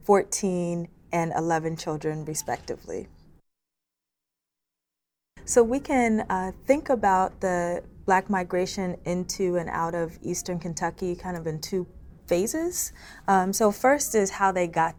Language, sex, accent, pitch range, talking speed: English, female, American, 165-190 Hz, 130 wpm